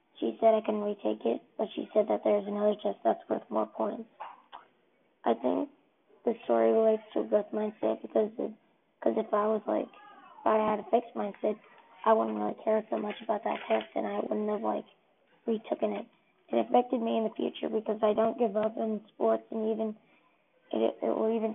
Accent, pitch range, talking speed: American, 205-225 Hz, 200 wpm